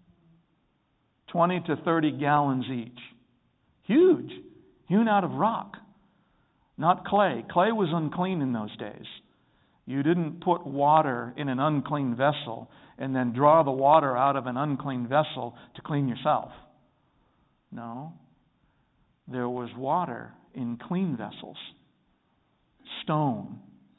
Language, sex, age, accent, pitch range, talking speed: English, male, 60-79, American, 125-170 Hz, 120 wpm